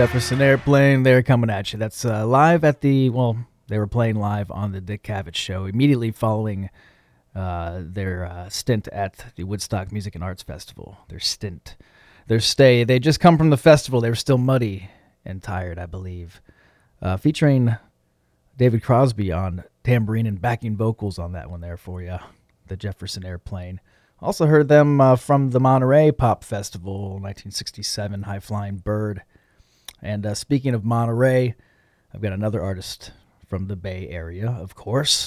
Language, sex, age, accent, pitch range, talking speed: English, male, 30-49, American, 95-125 Hz, 165 wpm